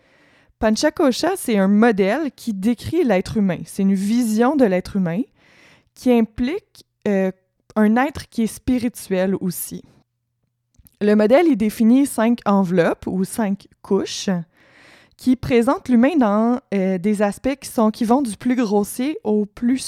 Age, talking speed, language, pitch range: 20-39, 145 wpm, French, 195-245 Hz